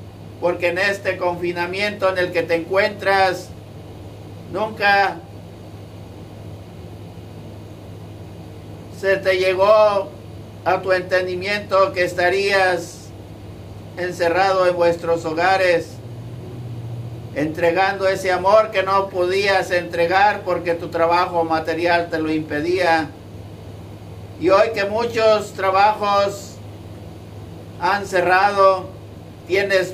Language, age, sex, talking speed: Spanish, 50-69, male, 90 wpm